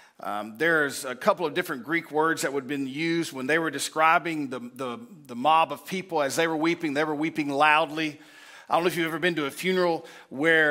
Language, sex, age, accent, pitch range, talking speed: English, male, 40-59, American, 140-170 Hz, 240 wpm